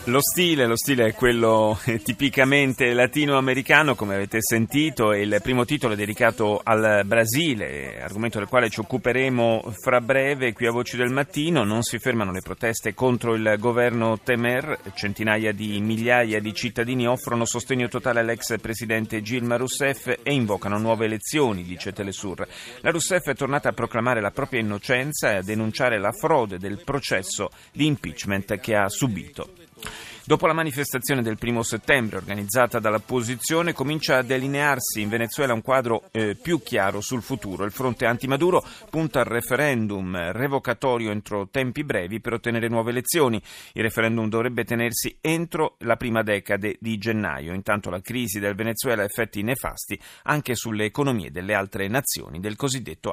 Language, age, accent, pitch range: Italian, 30-49, native, 105-130 Hz